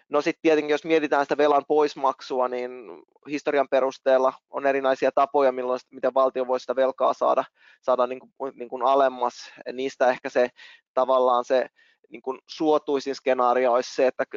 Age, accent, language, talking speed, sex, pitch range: 20-39, native, Finnish, 165 wpm, male, 125-135 Hz